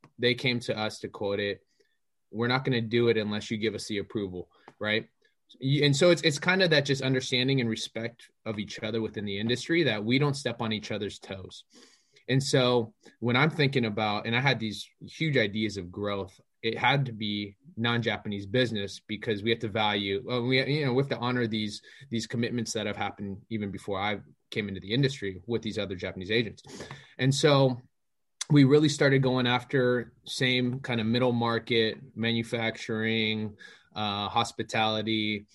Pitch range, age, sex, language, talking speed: 105-130 Hz, 20-39, male, English, 185 wpm